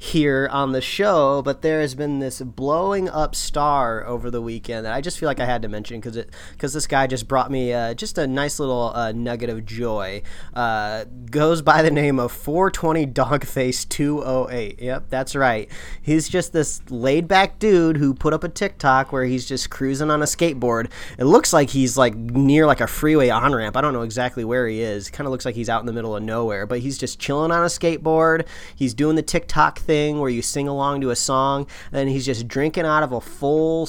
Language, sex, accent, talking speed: English, male, American, 220 wpm